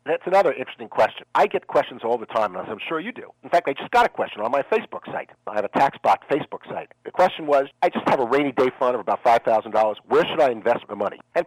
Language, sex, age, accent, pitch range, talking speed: English, male, 50-69, American, 135-215 Hz, 275 wpm